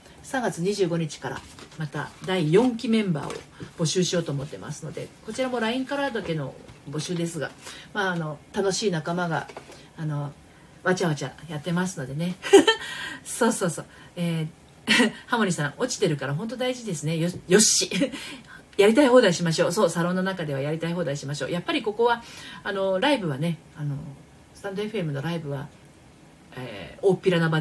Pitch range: 150-215 Hz